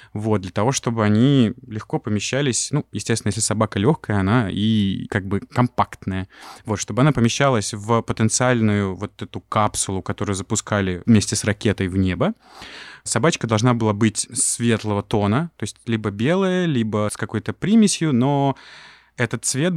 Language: Russian